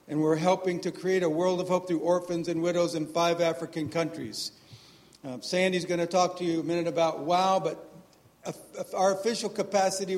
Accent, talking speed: American, 190 wpm